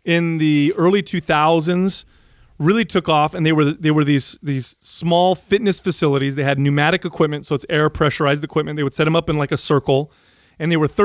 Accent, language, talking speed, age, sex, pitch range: American, English, 200 wpm, 30-49, male, 145-190 Hz